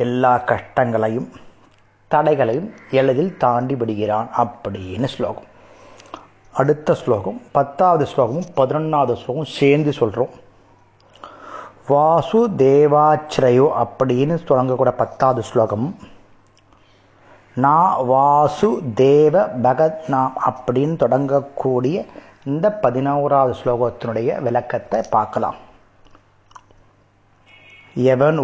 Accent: native